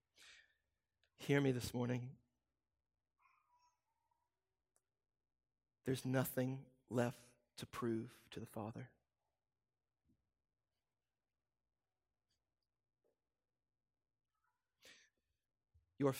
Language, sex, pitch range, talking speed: English, male, 120-155 Hz, 50 wpm